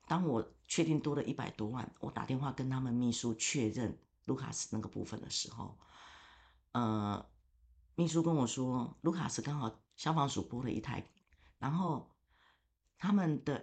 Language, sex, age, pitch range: Chinese, female, 50-69, 110-150 Hz